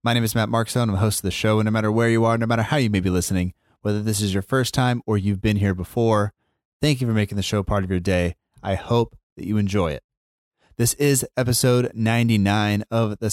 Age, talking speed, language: 30-49, 255 wpm, English